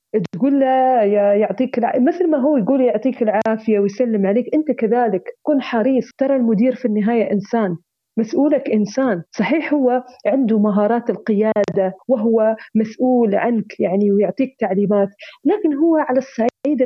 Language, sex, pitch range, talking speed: Arabic, female, 210-275 Hz, 140 wpm